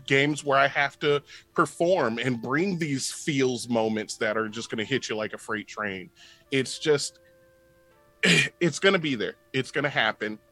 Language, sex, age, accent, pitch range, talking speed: English, male, 30-49, American, 115-145 Hz, 190 wpm